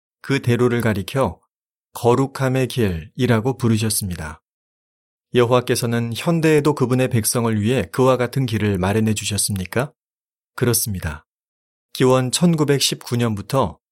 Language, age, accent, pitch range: Korean, 30-49, native, 105-135 Hz